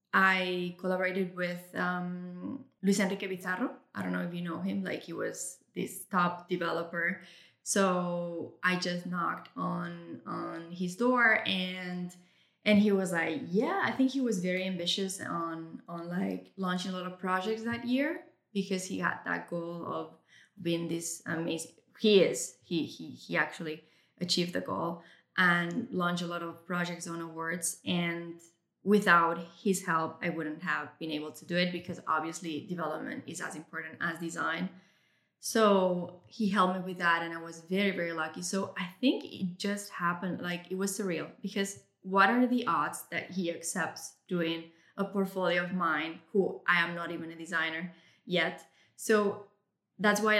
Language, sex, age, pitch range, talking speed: English, female, 20-39, 170-195 Hz, 170 wpm